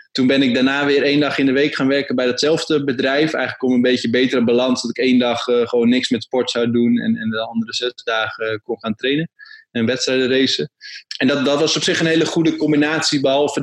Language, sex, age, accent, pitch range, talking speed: Dutch, male, 20-39, Dutch, 115-135 Hz, 245 wpm